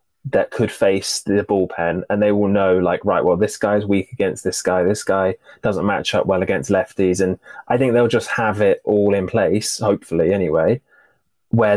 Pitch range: 90-115 Hz